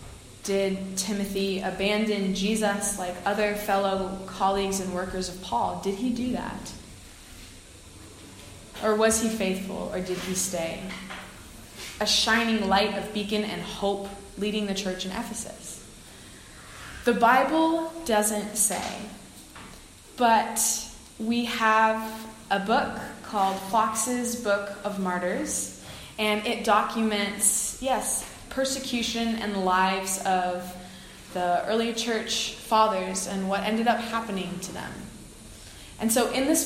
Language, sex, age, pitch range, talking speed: English, female, 20-39, 190-225 Hz, 120 wpm